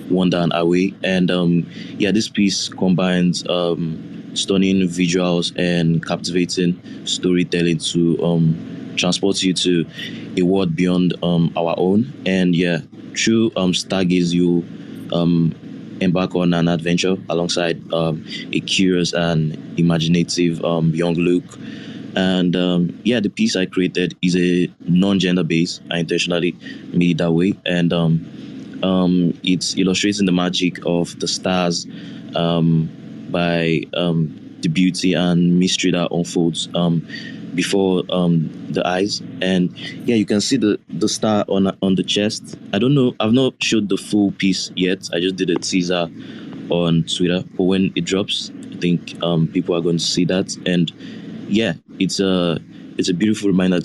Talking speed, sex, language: 155 wpm, male, English